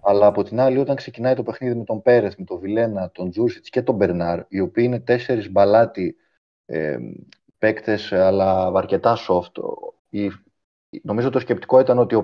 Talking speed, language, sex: 175 wpm, Greek, male